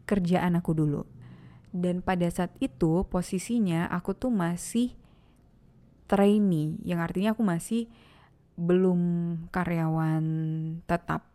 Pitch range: 160-190 Hz